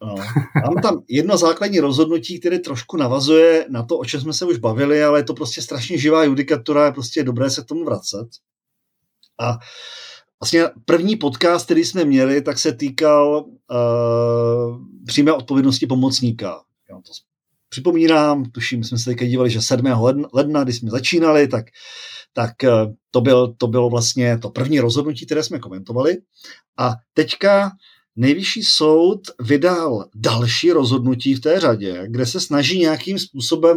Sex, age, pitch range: male, 40-59, 120-160 Hz